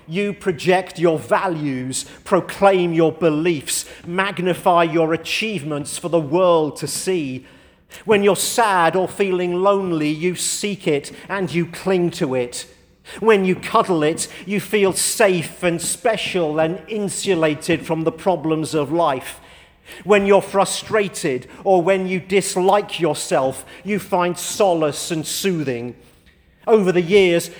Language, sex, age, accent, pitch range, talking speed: English, male, 50-69, British, 155-190 Hz, 135 wpm